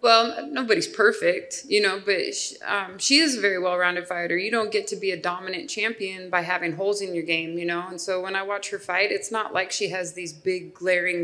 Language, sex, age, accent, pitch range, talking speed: English, female, 20-39, American, 175-220 Hz, 235 wpm